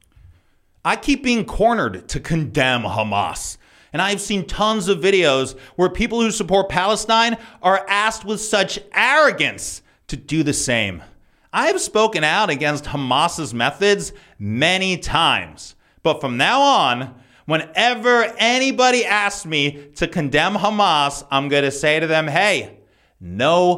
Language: English